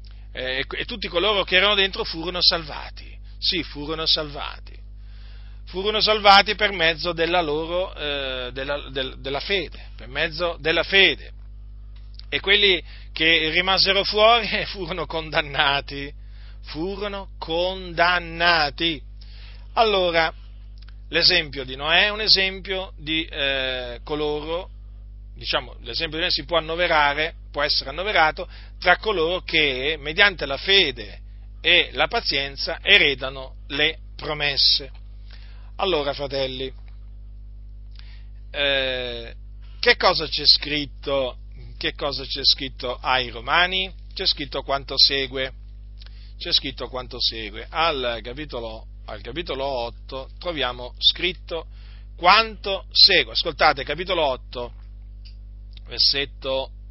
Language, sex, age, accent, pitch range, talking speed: Italian, male, 40-59, native, 100-165 Hz, 105 wpm